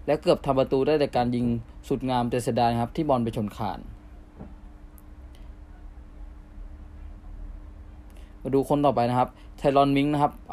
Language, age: Thai, 20-39